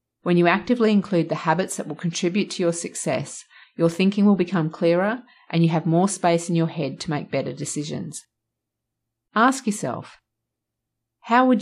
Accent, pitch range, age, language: Australian, 140-190 Hz, 30-49, English